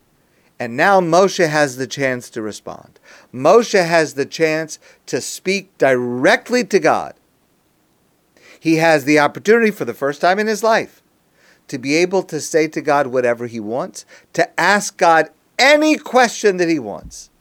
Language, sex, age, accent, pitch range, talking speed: English, male, 50-69, American, 140-195 Hz, 160 wpm